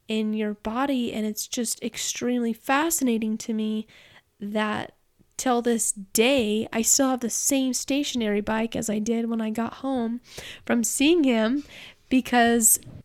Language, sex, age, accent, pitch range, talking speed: English, female, 10-29, American, 205-240 Hz, 145 wpm